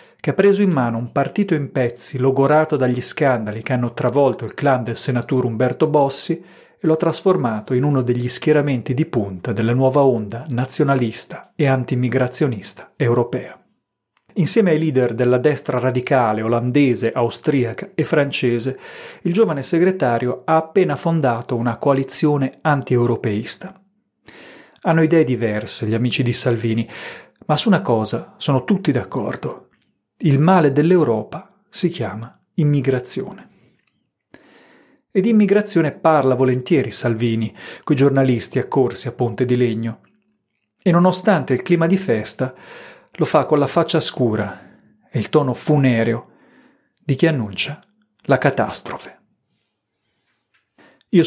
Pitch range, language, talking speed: 120-160 Hz, Italian, 130 wpm